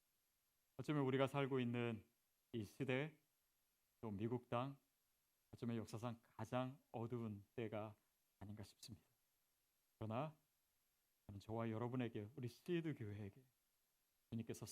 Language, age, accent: Korean, 40-59, native